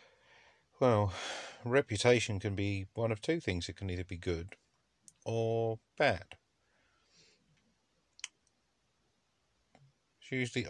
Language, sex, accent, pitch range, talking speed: English, male, British, 90-120 Hz, 95 wpm